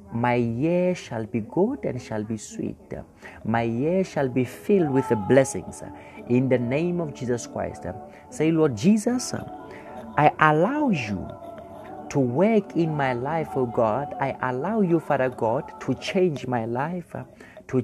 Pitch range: 120-165 Hz